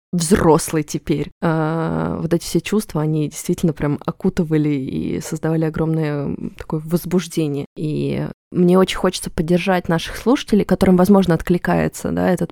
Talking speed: 135 wpm